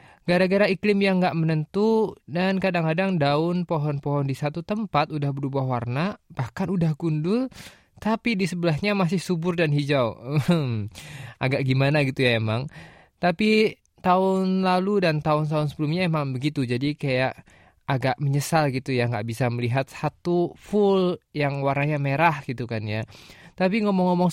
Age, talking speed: 20-39, 140 wpm